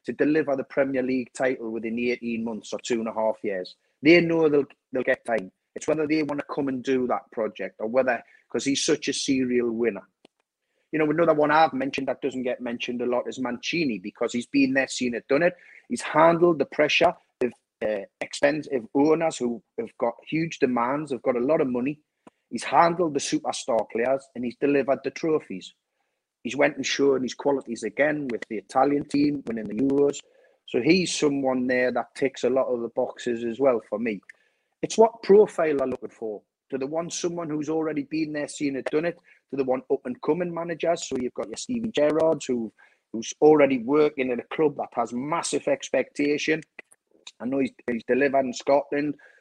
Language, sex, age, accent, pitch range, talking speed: English, male, 30-49, British, 125-150 Hz, 205 wpm